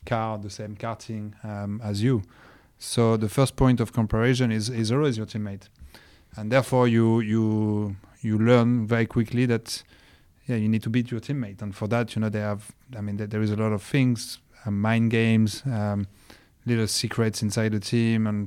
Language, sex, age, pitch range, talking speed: English, male, 30-49, 110-120 Hz, 195 wpm